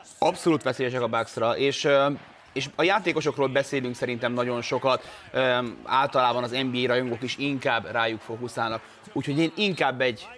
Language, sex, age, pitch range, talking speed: Hungarian, male, 30-49, 125-155 Hz, 140 wpm